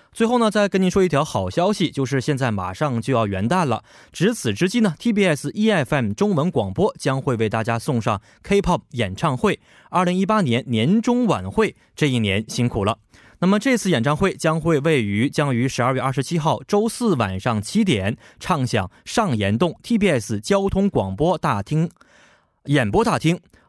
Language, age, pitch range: Korean, 20-39, 115-180 Hz